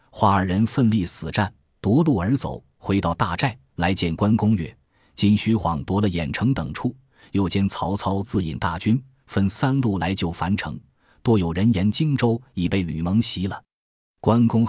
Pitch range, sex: 85-115 Hz, male